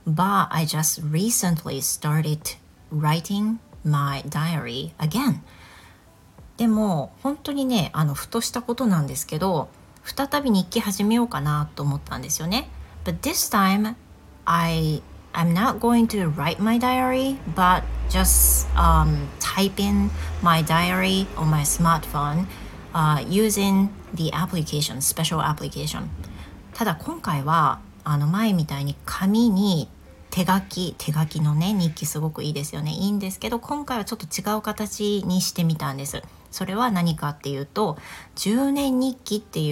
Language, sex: Japanese, female